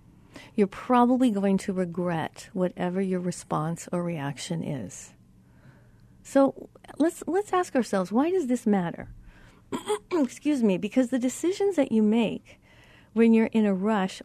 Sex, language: female, English